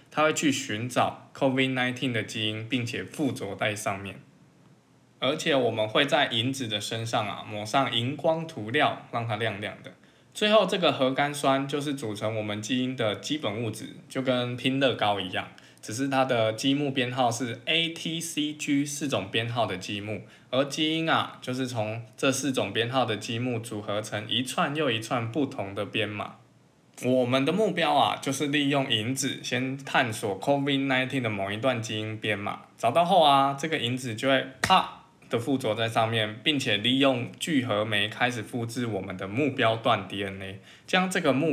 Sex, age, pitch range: male, 20-39, 110-140 Hz